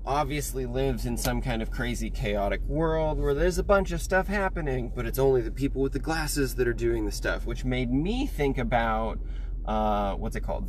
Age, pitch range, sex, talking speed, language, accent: 20-39, 110-135 Hz, male, 215 wpm, English, American